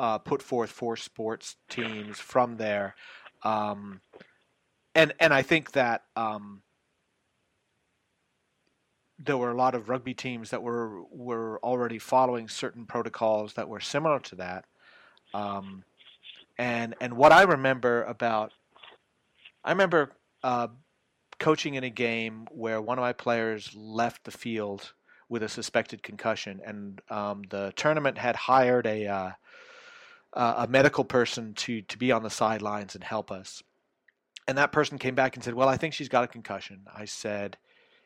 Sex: male